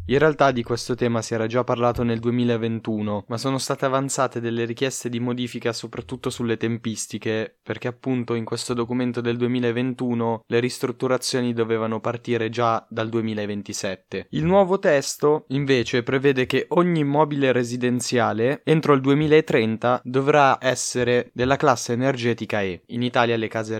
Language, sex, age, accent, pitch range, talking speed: Italian, male, 20-39, native, 115-135 Hz, 145 wpm